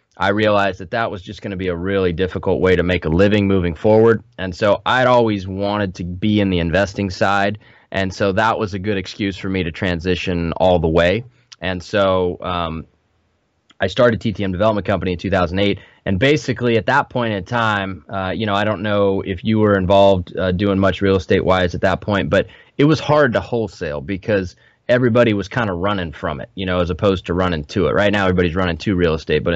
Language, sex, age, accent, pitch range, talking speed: English, male, 20-39, American, 90-110 Hz, 220 wpm